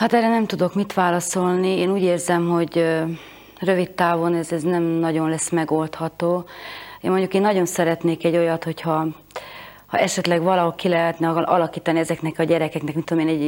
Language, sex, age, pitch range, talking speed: Hungarian, female, 30-49, 160-180 Hz, 175 wpm